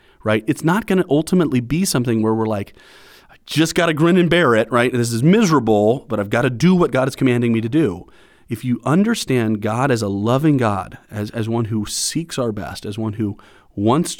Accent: American